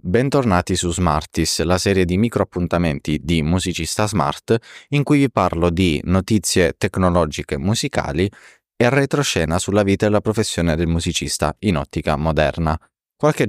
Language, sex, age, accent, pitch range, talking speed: Italian, male, 20-39, native, 80-110 Hz, 140 wpm